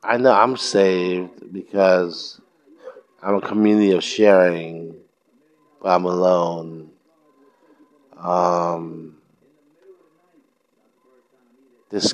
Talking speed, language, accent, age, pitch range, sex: 75 wpm, English, American, 50-69, 90-125 Hz, male